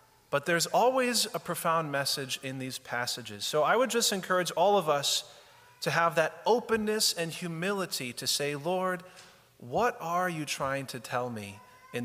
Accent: American